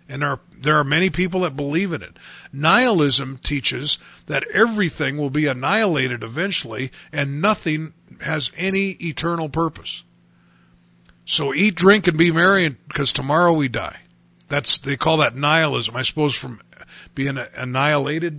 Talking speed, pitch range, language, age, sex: 145 wpm, 125-175 Hz, English, 50-69, male